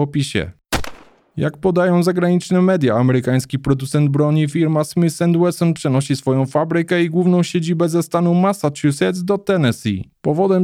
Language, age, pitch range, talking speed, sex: Polish, 20-39, 130-165 Hz, 125 wpm, male